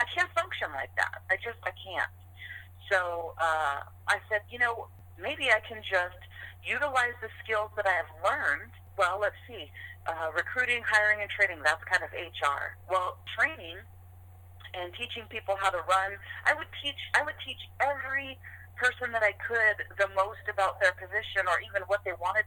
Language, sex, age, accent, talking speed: English, female, 40-59, American, 180 wpm